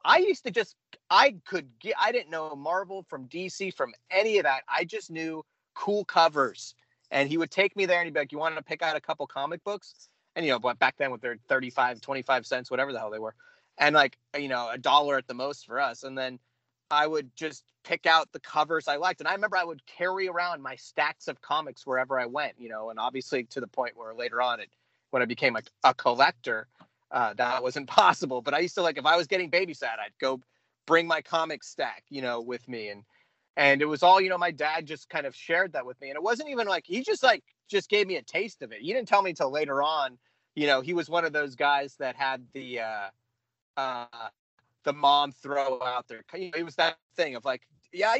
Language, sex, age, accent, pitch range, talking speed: English, male, 30-49, American, 130-175 Hz, 250 wpm